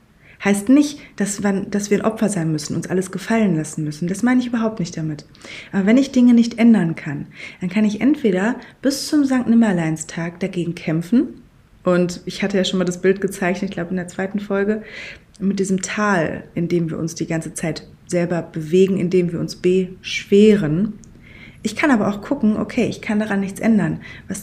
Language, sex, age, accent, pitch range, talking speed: German, female, 20-39, German, 175-210 Hz, 200 wpm